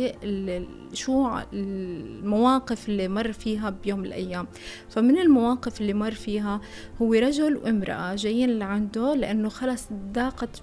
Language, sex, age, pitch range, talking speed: Arabic, female, 20-39, 210-255 Hz, 115 wpm